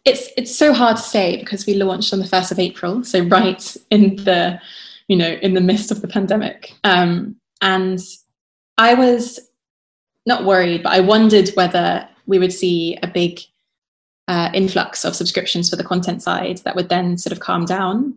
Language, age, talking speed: Portuguese, 20-39, 185 wpm